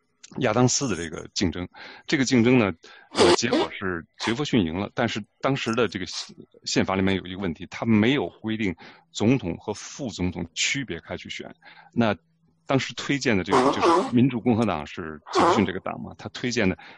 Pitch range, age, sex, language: 90-115 Hz, 30-49, male, Chinese